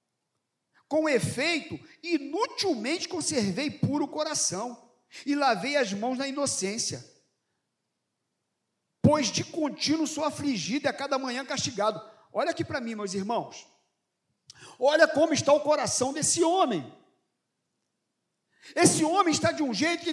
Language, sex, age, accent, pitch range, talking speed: Portuguese, male, 50-69, Brazilian, 235-330 Hz, 125 wpm